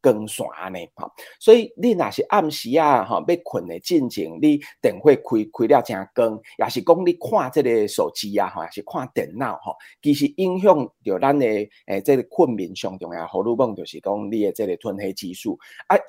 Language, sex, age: Chinese, male, 30-49